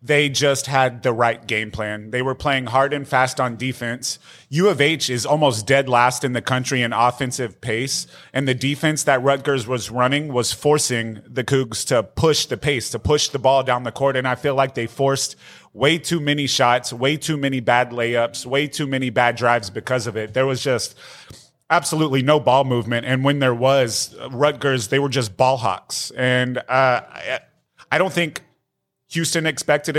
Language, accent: English, American